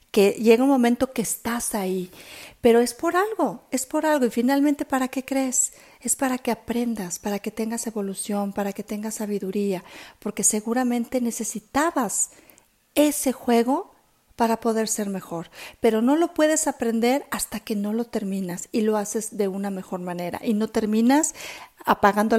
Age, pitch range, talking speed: 40-59, 205-245 Hz, 165 wpm